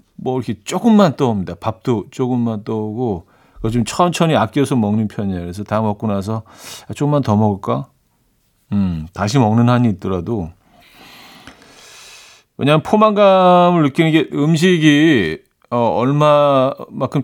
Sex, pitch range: male, 110-150 Hz